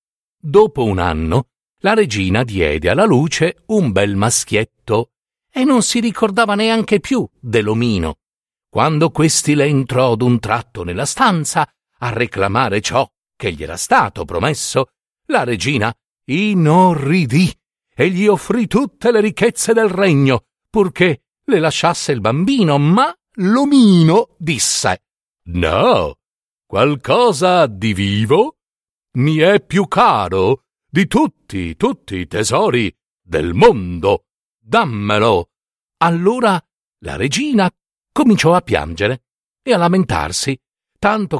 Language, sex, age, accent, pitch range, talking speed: Italian, male, 50-69, native, 120-195 Hz, 115 wpm